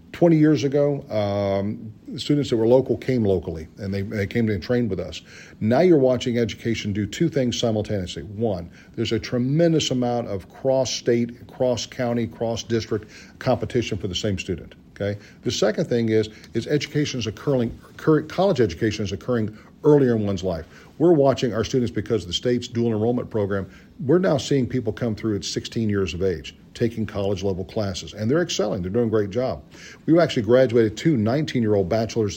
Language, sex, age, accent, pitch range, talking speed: English, male, 40-59, American, 105-135 Hz, 180 wpm